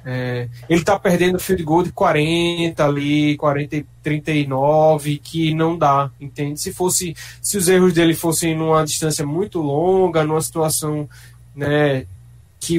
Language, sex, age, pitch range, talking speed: Portuguese, male, 20-39, 145-175 Hz, 150 wpm